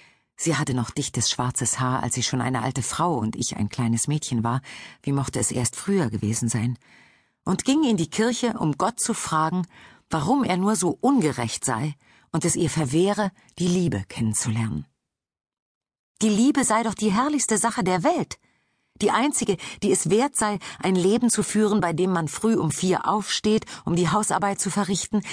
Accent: German